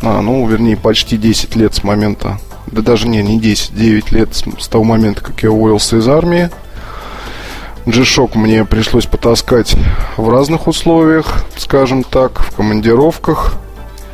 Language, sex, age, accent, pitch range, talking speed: Russian, male, 20-39, native, 105-125 Hz, 145 wpm